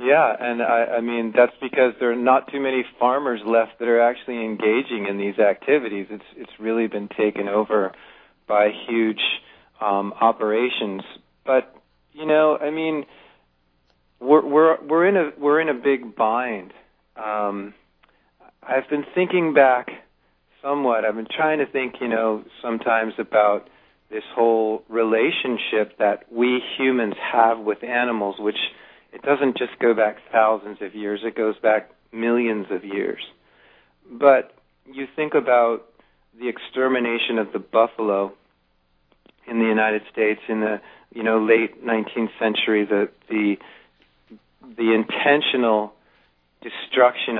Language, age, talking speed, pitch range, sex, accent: English, 40-59, 140 wpm, 105-120 Hz, male, American